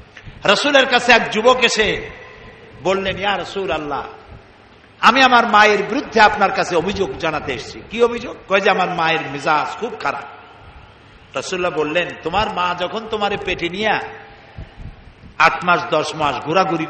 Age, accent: 60-79, native